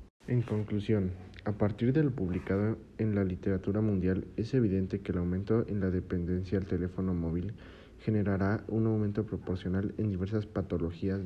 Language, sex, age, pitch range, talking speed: Spanish, male, 40-59, 95-110 Hz, 155 wpm